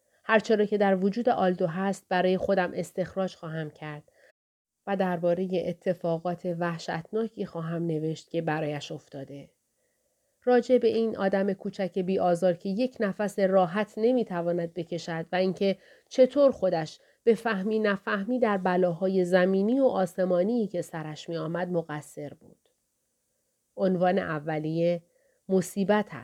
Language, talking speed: Persian, 120 wpm